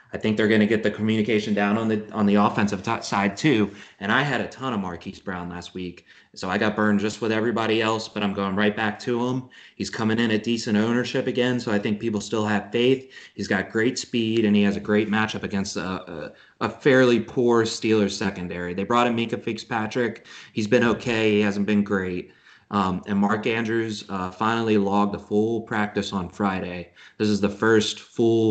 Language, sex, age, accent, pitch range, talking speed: English, male, 30-49, American, 95-110 Hz, 215 wpm